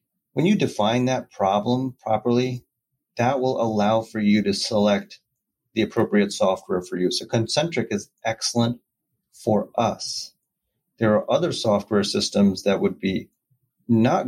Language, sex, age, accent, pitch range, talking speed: English, male, 30-49, American, 100-125 Hz, 140 wpm